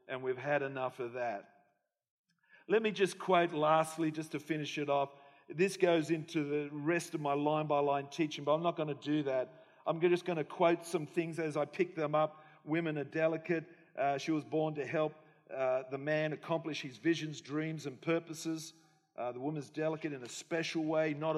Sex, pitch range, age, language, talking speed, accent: male, 145-165 Hz, 50-69, English, 200 wpm, Australian